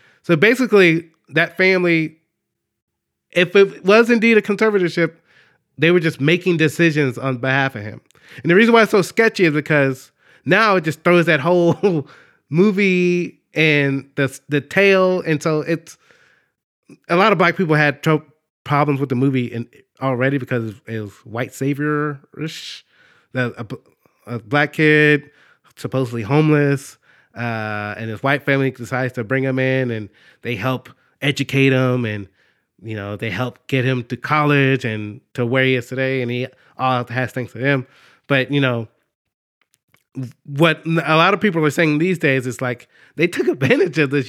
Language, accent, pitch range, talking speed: English, American, 130-165 Hz, 165 wpm